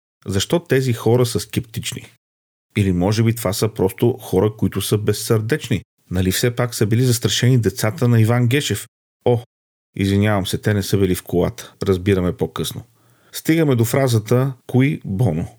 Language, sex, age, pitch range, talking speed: Bulgarian, male, 40-59, 105-130 Hz, 160 wpm